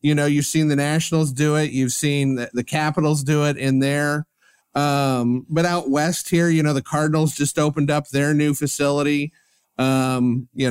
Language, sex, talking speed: English, male, 190 wpm